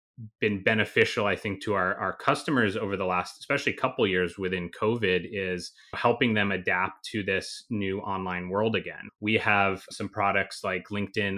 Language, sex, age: English, male, 30-49